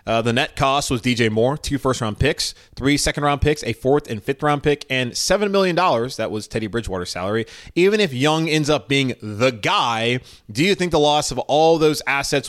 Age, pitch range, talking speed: 30-49, 110-150 Hz, 205 wpm